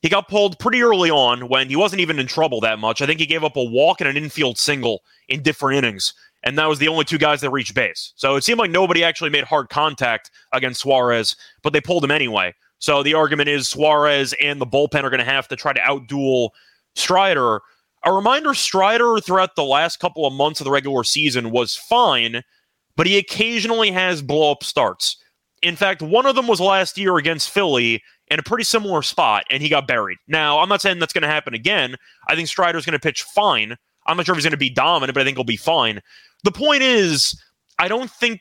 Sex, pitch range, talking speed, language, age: male, 135-185 Hz, 230 wpm, English, 30-49